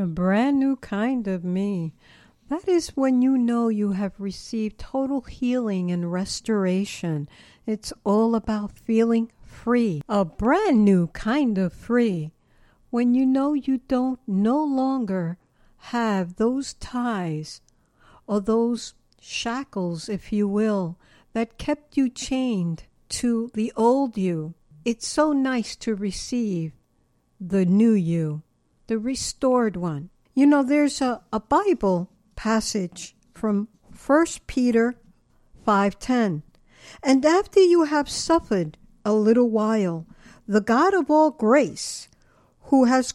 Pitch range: 190-255 Hz